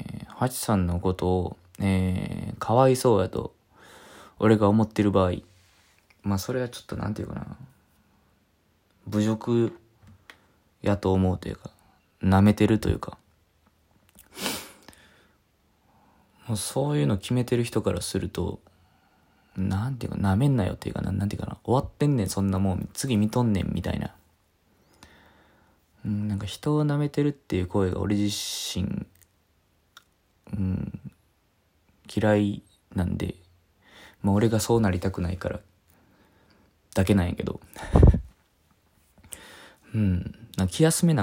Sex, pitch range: male, 95-110 Hz